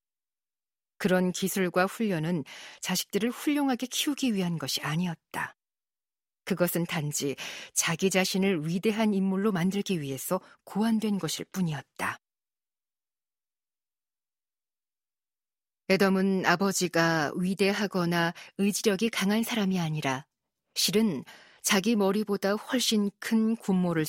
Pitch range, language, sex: 165-215 Hz, Korean, female